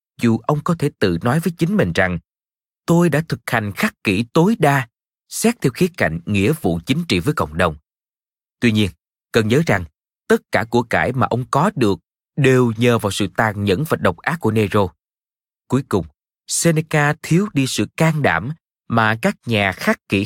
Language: Vietnamese